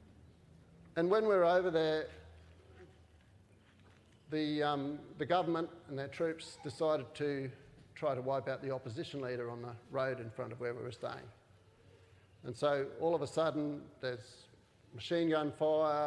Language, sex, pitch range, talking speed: English, male, 115-155 Hz, 155 wpm